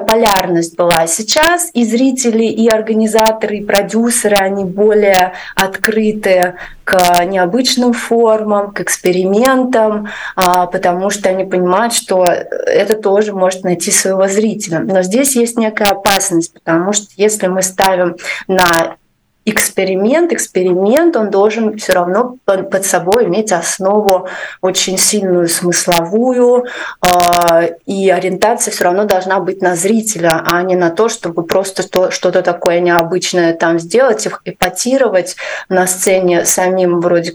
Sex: female